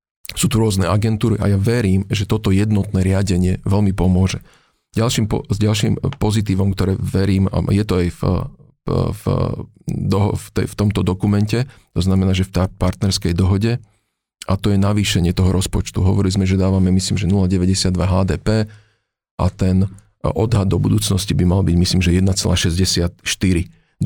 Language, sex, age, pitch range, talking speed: Slovak, male, 40-59, 95-105 Hz, 160 wpm